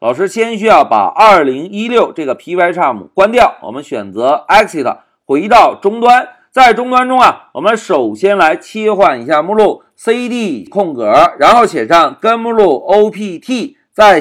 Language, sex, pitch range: Chinese, male, 200-305 Hz